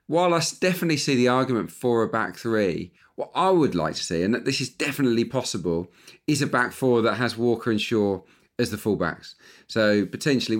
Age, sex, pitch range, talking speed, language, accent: 40-59, male, 100-125 Hz, 205 wpm, English, British